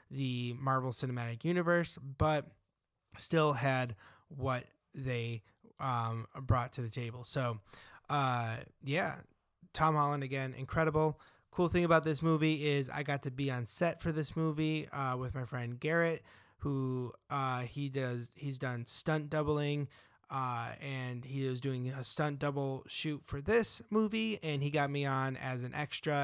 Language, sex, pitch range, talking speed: English, male, 125-150 Hz, 160 wpm